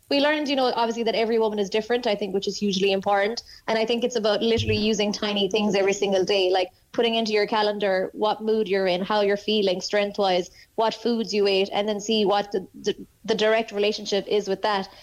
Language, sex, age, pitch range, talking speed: English, female, 20-39, 200-225 Hz, 230 wpm